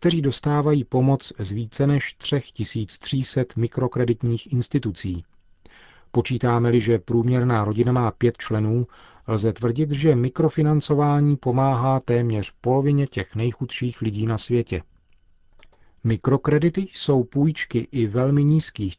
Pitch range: 110-135 Hz